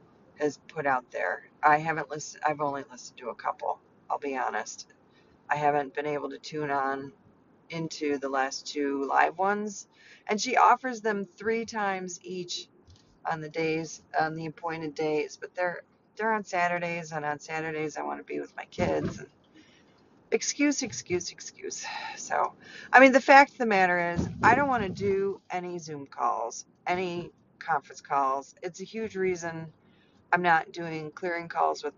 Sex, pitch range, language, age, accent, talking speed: female, 155-200 Hz, English, 40-59, American, 170 wpm